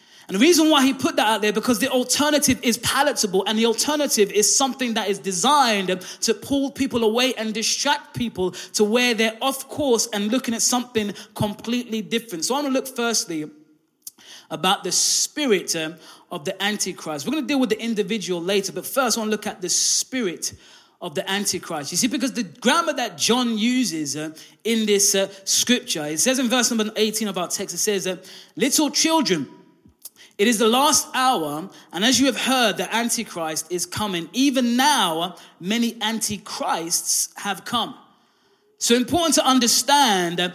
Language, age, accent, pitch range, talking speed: English, 20-39, British, 195-255 Hz, 180 wpm